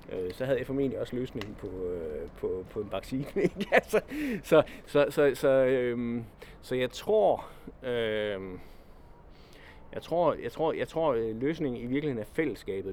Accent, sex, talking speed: native, male, 155 wpm